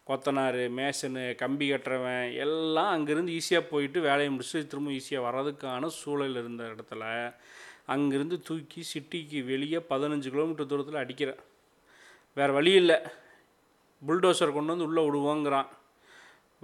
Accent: native